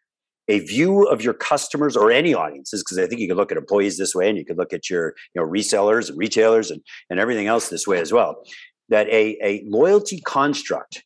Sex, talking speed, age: male, 230 wpm, 50-69